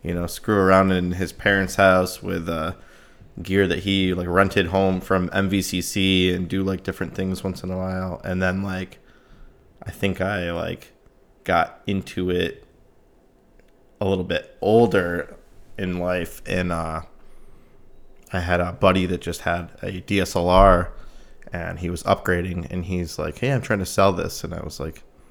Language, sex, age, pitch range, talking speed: English, male, 20-39, 90-95 Hz, 170 wpm